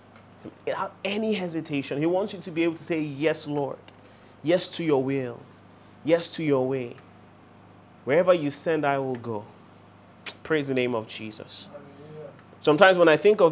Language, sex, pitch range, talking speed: English, male, 135-200 Hz, 165 wpm